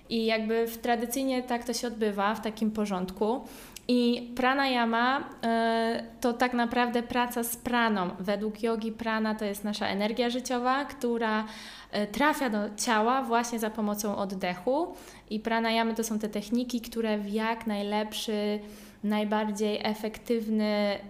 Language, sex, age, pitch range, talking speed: Polish, female, 20-39, 210-240 Hz, 130 wpm